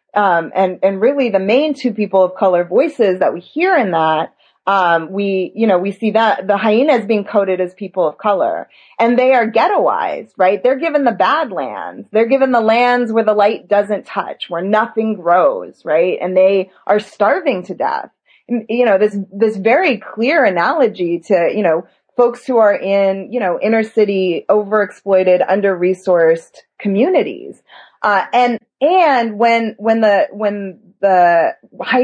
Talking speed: 170 wpm